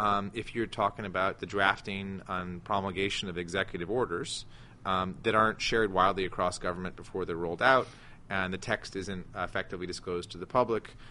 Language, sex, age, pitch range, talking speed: English, male, 30-49, 95-115 Hz, 175 wpm